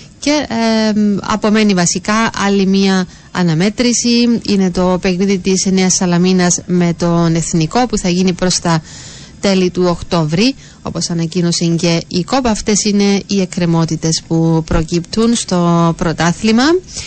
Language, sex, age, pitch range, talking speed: Greek, female, 30-49, 180-215 Hz, 125 wpm